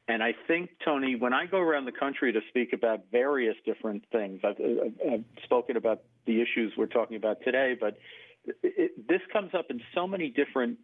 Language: English